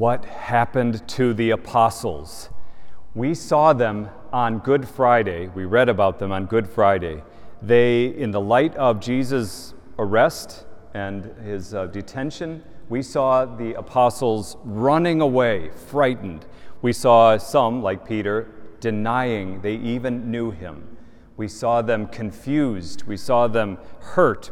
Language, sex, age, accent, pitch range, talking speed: English, male, 40-59, American, 100-125 Hz, 130 wpm